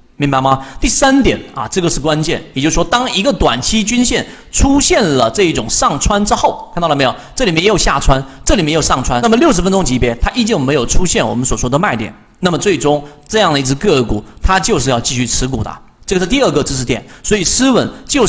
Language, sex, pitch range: Chinese, male, 135-195 Hz